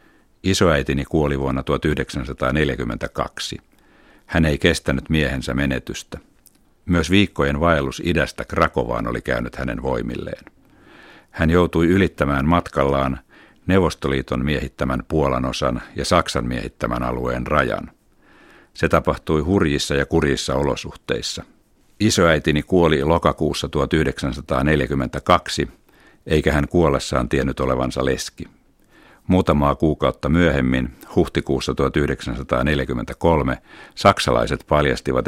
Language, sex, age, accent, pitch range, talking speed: Finnish, male, 60-79, native, 65-80 Hz, 90 wpm